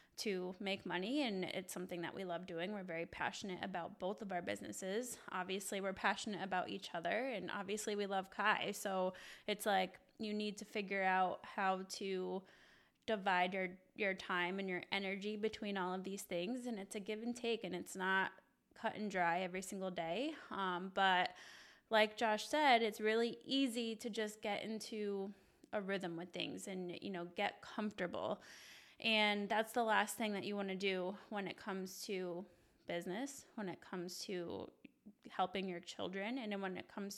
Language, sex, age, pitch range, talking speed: English, female, 20-39, 185-215 Hz, 180 wpm